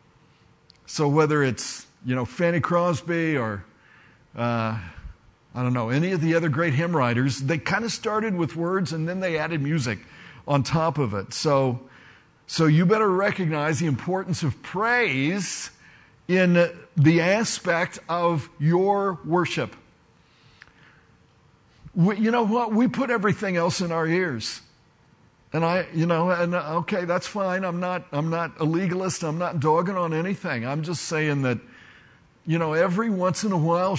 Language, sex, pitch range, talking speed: English, male, 145-180 Hz, 155 wpm